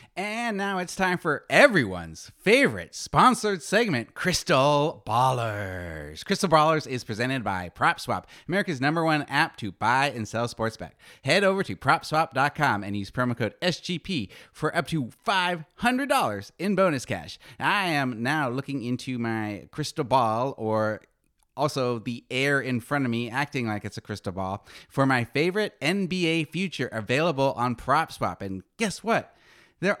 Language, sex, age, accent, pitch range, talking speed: English, male, 30-49, American, 105-155 Hz, 155 wpm